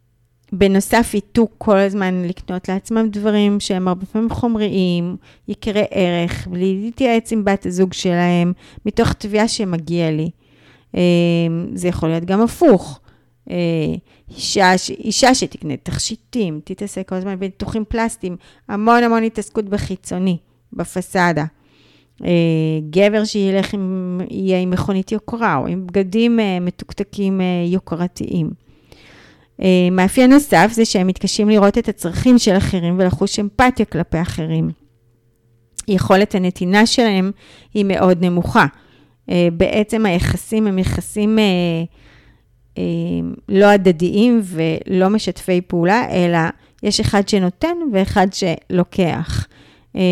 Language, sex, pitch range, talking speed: Hebrew, female, 170-210 Hz, 110 wpm